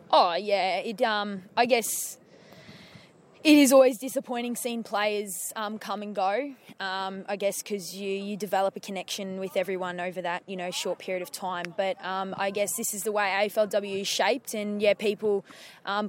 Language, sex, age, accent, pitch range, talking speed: English, female, 20-39, Australian, 180-205 Hz, 185 wpm